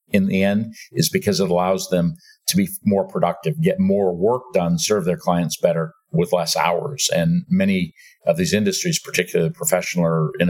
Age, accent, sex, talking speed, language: 50-69, American, male, 190 wpm, English